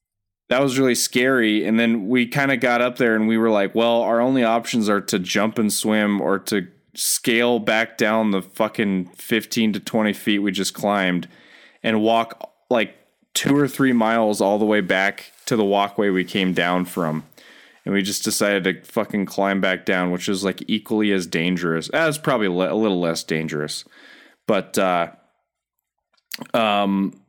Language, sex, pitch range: English, male, 90-110 Hz